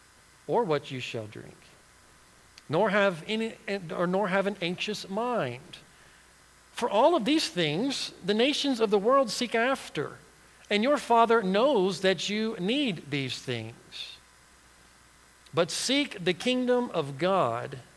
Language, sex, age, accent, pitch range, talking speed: English, male, 50-69, American, 140-225 Hz, 135 wpm